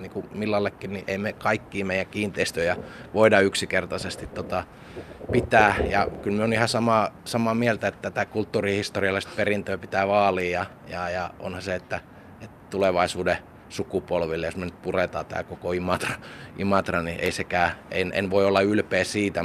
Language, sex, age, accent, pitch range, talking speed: Finnish, male, 20-39, native, 95-110 Hz, 155 wpm